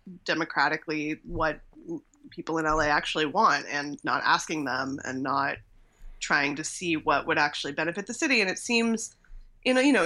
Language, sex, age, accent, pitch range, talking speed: English, female, 20-39, American, 150-185 Hz, 160 wpm